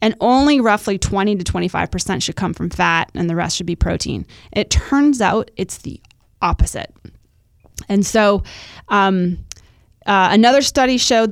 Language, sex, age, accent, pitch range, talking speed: English, female, 20-39, American, 180-225 Hz, 155 wpm